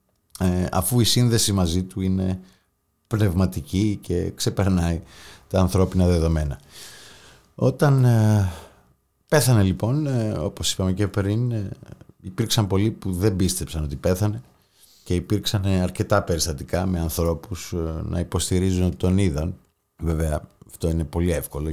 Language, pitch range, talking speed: Greek, 80-100 Hz, 115 wpm